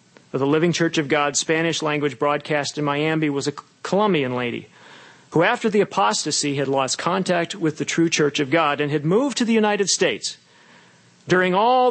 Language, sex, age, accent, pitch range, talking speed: English, male, 40-59, American, 135-170 Hz, 180 wpm